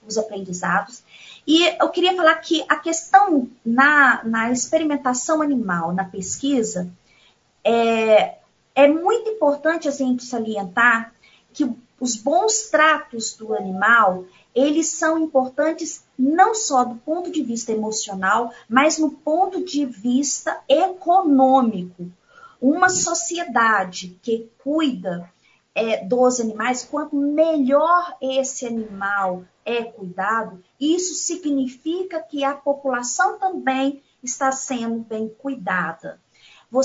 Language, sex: Portuguese, female